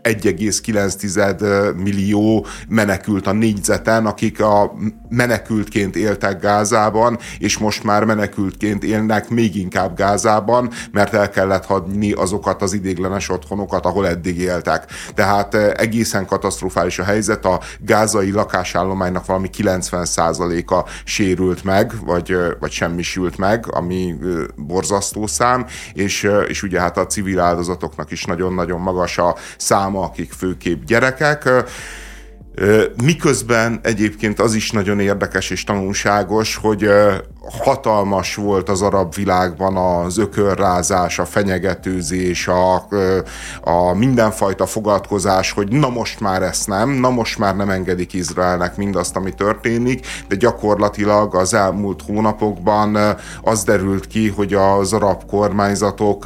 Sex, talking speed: male, 120 wpm